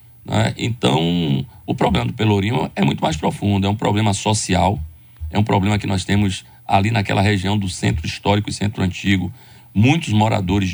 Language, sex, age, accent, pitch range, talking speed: Portuguese, male, 40-59, Brazilian, 90-110 Hz, 170 wpm